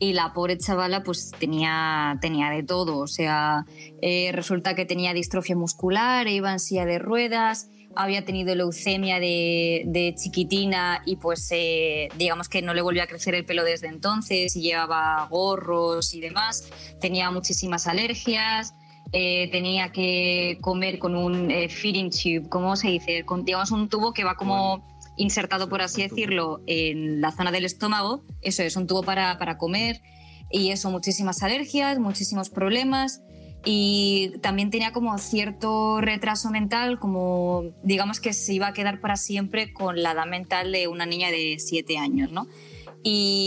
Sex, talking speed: female, 165 wpm